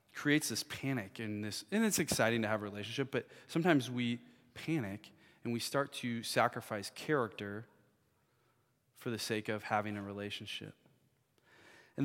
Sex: male